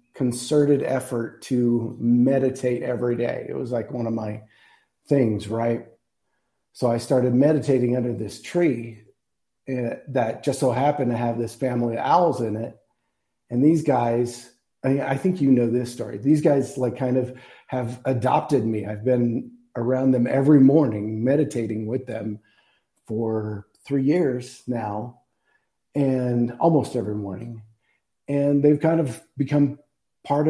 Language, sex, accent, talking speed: English, male, American, 145 wpm